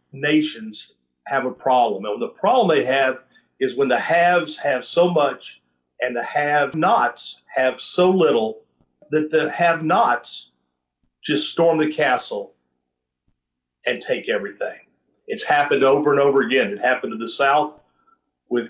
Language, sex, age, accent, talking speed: English, male, 50-69, American, 150 wpm